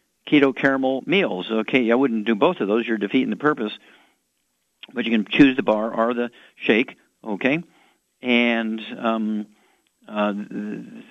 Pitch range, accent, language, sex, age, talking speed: 105-125 Hz, American, English, male, 50-69, 145 wpm